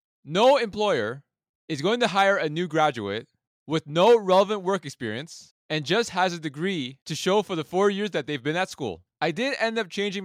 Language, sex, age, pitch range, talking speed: English, male, 20-39, 150-200 Hz, 205 wpm